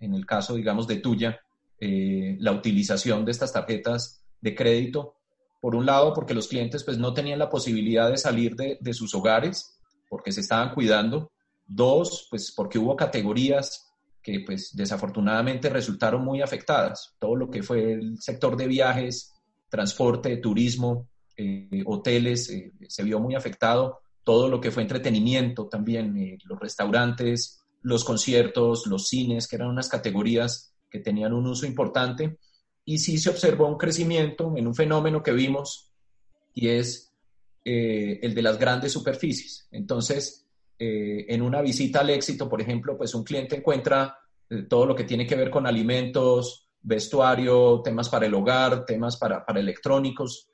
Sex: male